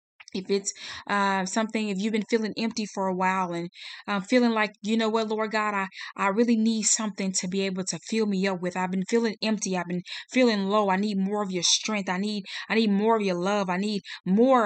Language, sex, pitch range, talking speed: English, female, 190-230 Hz, 240 wpm